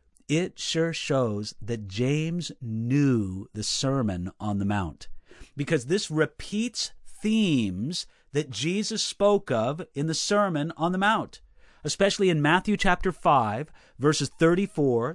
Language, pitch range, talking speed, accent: English, 130-195 Hz, 125 wpm, American